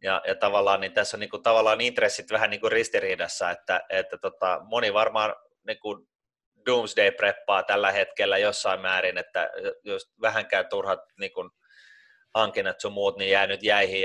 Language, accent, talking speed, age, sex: Finnish, native, 160 wpm, 30-49, male